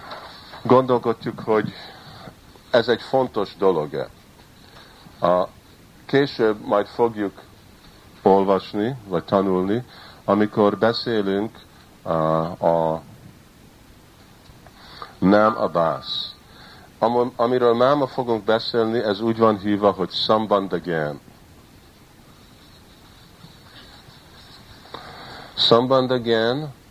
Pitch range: 85-110 Hz